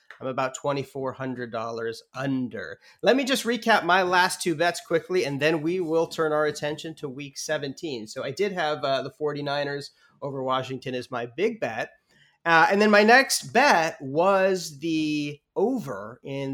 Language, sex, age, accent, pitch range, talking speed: English, male, 30-49, American, 130-170 Hz, 165 wpm